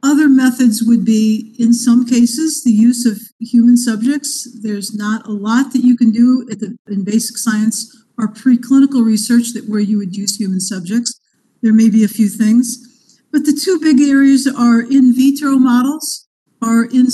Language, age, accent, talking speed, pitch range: English, 50-69, American, 180 wpm, 230-265 Hz